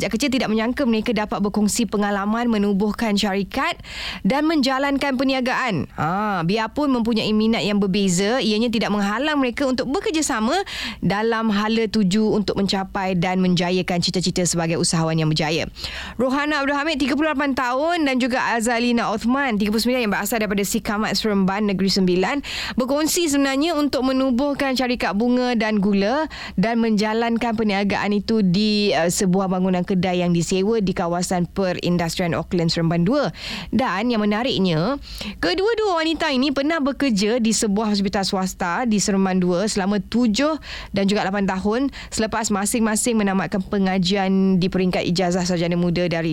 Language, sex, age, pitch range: Indonesian, female, 20-39, 190-250 Hz